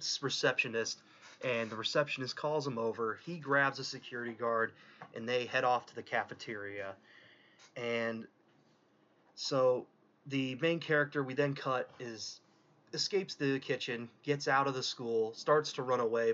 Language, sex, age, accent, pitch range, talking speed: English, male, 30-49, American, 115-145 Hz, 145 wpm